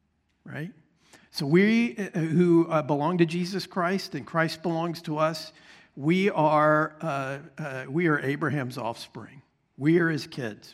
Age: 50-69